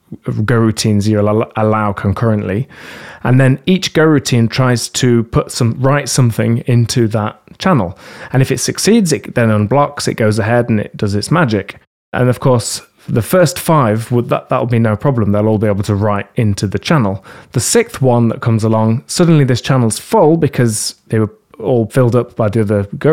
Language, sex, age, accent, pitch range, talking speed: English, male, 30-49, British, 110-130 Hz, 195 wpm